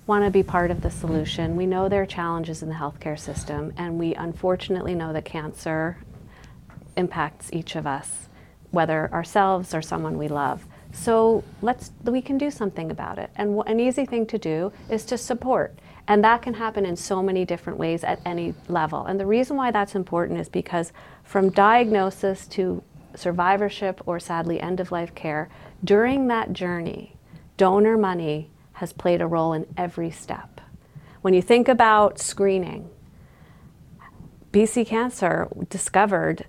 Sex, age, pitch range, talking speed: female, 40-59, 170-210 Hz, 160 wpm